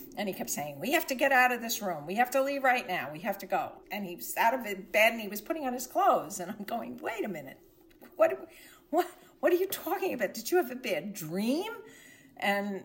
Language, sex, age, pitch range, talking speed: English, female, 50-69, 185-265 Hz, 250 wpm